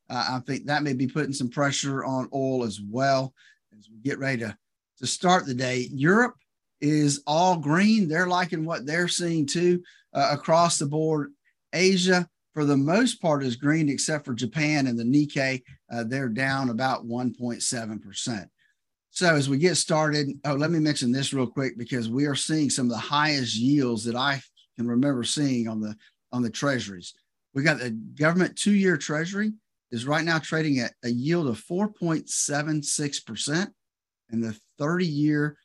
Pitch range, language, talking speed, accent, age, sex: 125-160 Hz, English, 175 wpm, American, 50-69, male